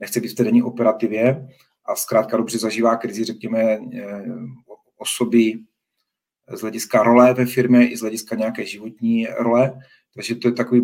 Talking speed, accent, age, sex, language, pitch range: 155 wpm, native, 30-49, male, Czech, 115-125 Hz